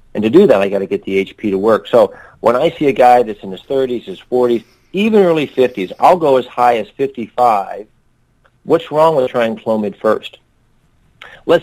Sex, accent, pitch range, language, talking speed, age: male, American, 110-140 Hz, English, 205 wpm, 40-59